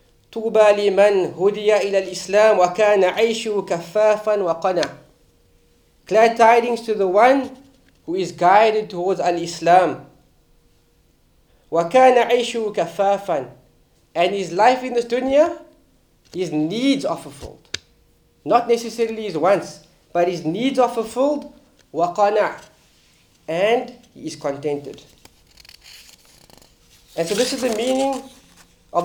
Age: 40-59